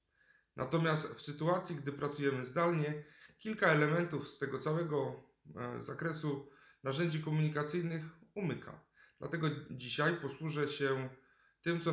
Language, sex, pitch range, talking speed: Polish, male, 125-150 Hz, 105 wpm